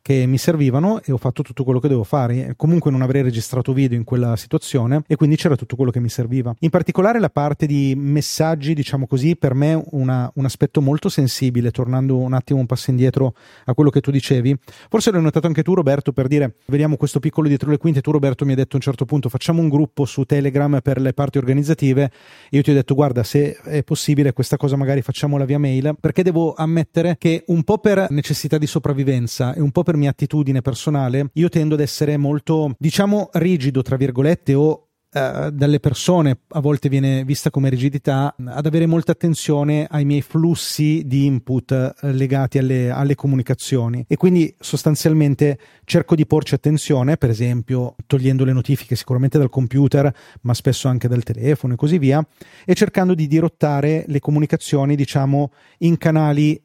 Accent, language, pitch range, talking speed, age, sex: native, Italian, 130-155 Hz, 190 wpm, 30-49, male